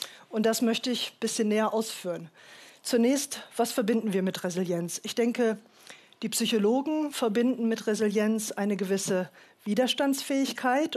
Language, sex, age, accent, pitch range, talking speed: German, female, 40-59, German, 205-260 Hz, 130 wpm